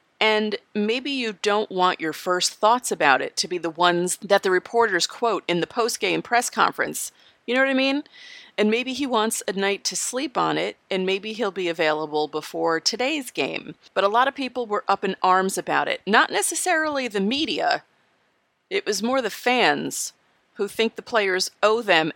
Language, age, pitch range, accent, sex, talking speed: English, 30-49, 175-240 Hz, American, female, 195 wpm